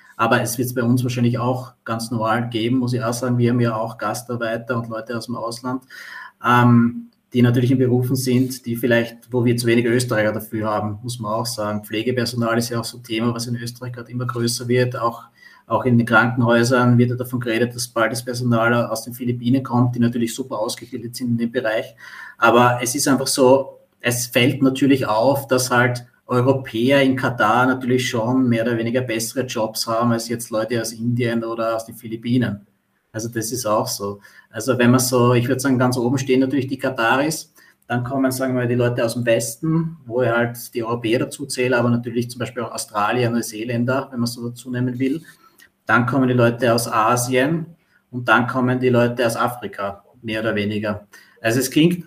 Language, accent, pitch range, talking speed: German, Austrian, 115-125 Hz, 205 wpm